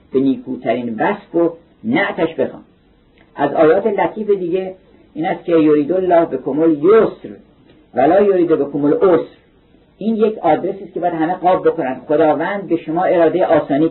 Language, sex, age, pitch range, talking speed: Persian, male, 50-69, 135-175 Hz, 160 wpm